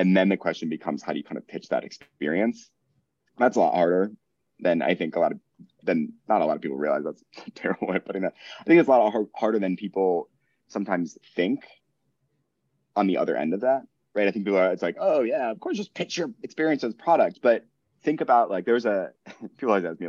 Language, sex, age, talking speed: English, male, 30-49, 245 wpm